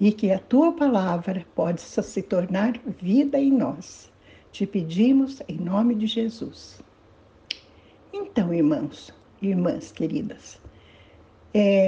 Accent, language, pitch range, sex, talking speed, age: Brazilian, Portuguese, 180-245 Hz, female, 115 wpm, 60-79